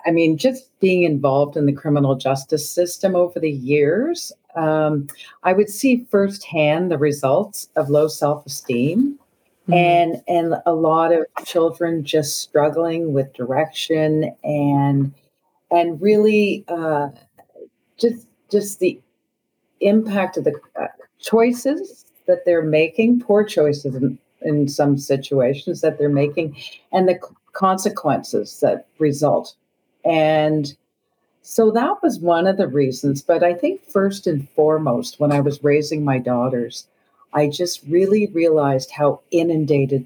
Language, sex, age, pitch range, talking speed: English, female, 50-69, 145-185 Hz, 130 wpm